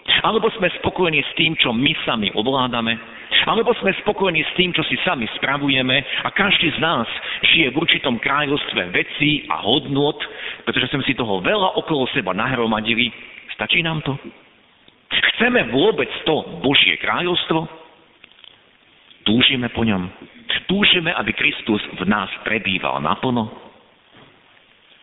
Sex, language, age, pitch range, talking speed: male, Slovak, 50-69, 110-160 Hz, 130 wpm